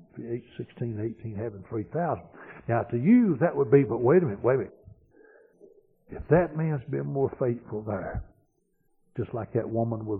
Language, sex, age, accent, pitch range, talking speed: English, male, 60-79, American, 110-140 Hz, 175 wpm